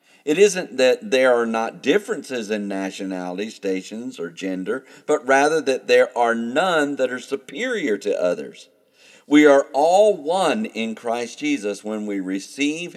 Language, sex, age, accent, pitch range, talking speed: English, male, 50-69, American, 105-150 Hz, 155 wpm